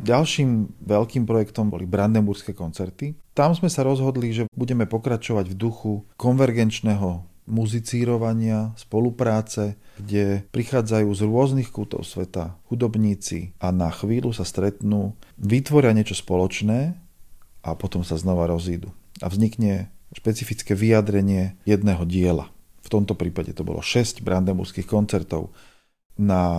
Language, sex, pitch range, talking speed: Slovak, male, 95-115 Hz, 120 wpm